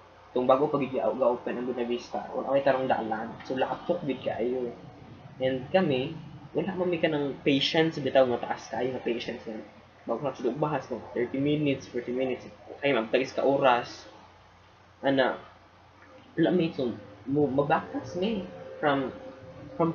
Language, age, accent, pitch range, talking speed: English, 20-39, Filipino, 120-150 Hz, 115 wpm